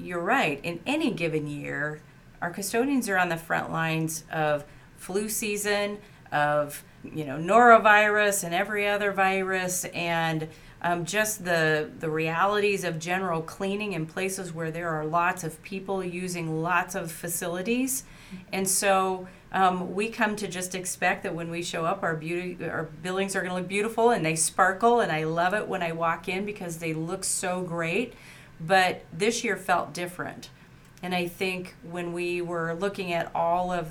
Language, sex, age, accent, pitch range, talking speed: English, female, 40-59, American, 165-190 Hz, 175 wpm